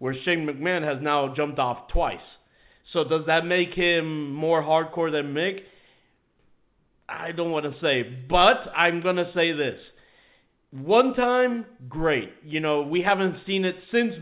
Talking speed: 160 wpm